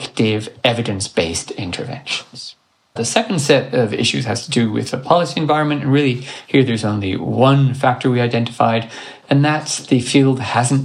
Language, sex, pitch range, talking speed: English, male, 115-140 Hz, 155 wpm